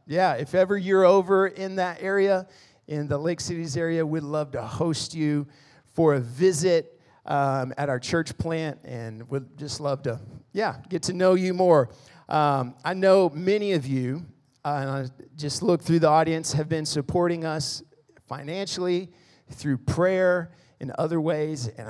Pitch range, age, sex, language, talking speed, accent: 135-160 Hz, 40-59, male, English, 170 wpm, American